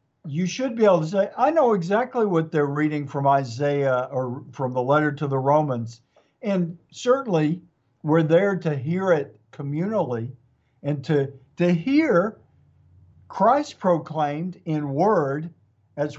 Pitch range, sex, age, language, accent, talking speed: 135-165 Hz, male, 50-69, English, American, 140 wpm